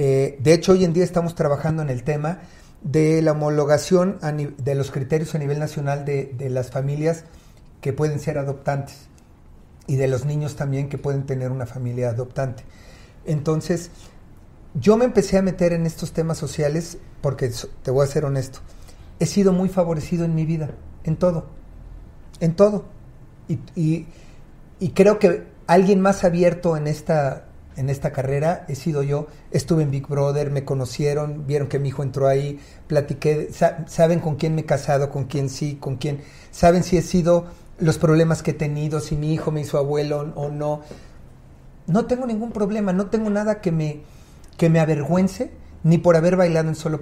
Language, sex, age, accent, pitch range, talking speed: Spanish, male, 40-59, Mexican, 140-170 Hz, 180 wpm